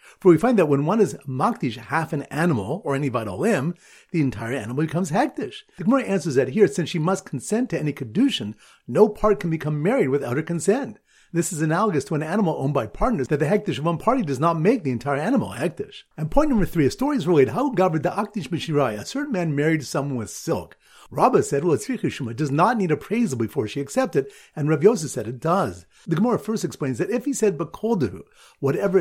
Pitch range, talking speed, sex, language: 140-210 Hz, 230 wpm, male, English